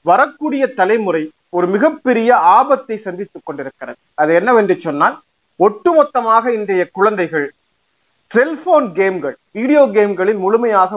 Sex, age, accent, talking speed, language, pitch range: male, 40-59, native, 60 wpm, Tamil, 180-240 Hz